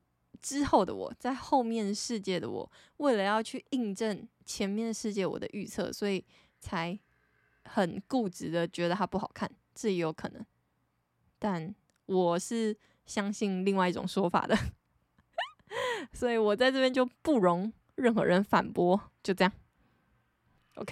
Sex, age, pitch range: female, 20-39, 185-235 Hz